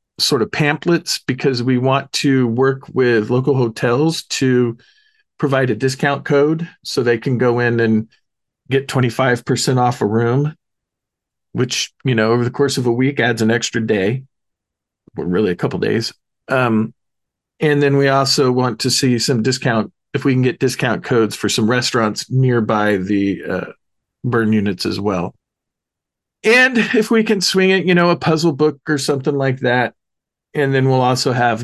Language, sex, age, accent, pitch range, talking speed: English, male, 40-59, American, 115-145 Hz, 175 wpm